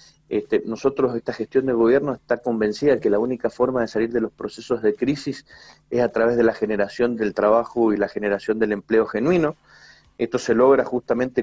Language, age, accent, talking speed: Spanish, 30-49, Argentinian, 200 wpm